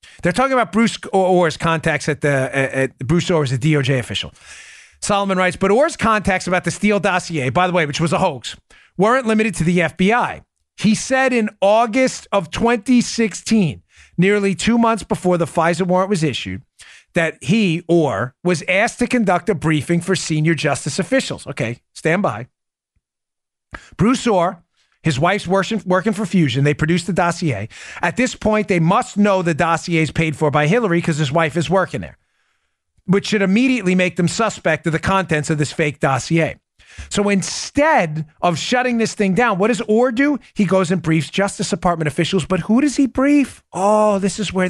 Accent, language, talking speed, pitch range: American, English, 185 wpm, 155-215 Hz